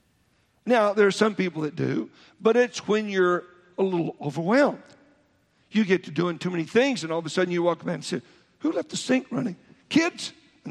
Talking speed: 215 wpm